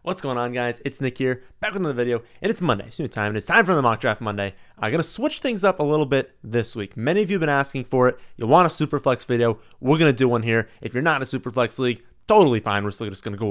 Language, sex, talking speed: English, male, 310 wpm